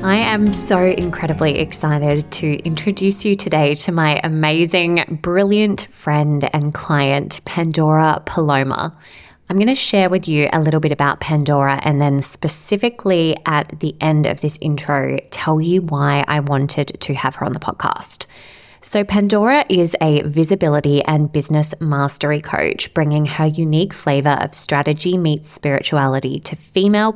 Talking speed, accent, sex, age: 150 wpm, Australian, female, 20-39